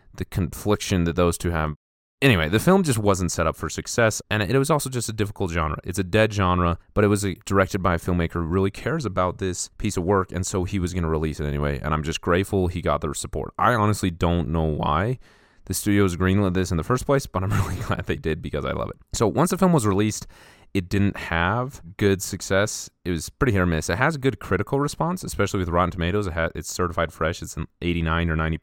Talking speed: 245 wpm